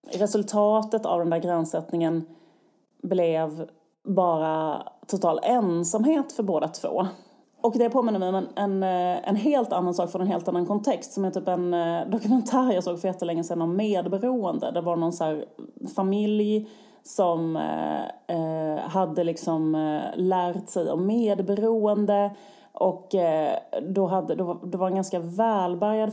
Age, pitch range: 30-49, 165-215 Hz